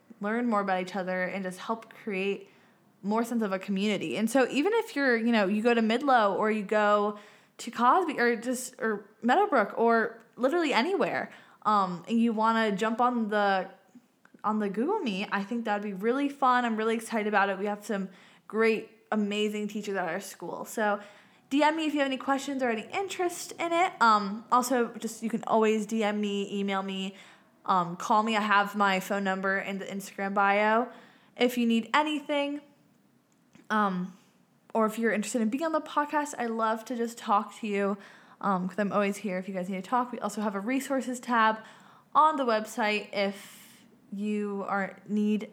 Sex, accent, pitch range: female, American, 200-240 Hz